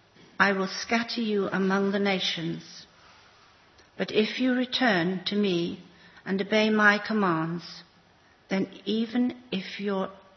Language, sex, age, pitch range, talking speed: English, female, 60-79, 180-220 Hz, 120 wpm